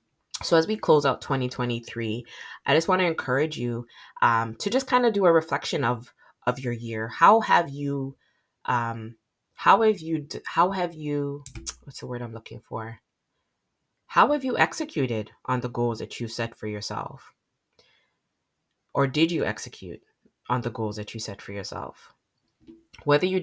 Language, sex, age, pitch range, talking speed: English, female, 20-39, 120-145 Hz, 170 wpm